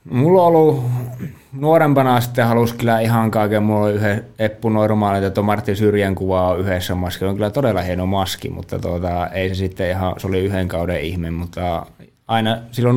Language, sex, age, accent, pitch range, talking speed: Finnish, male, 20-39, native, 90-110 Hz, 175 wpm